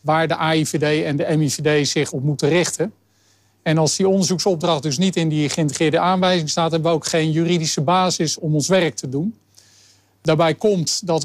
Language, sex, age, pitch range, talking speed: Dutch, male, 50-69, 145-180 Hz, 185 wpm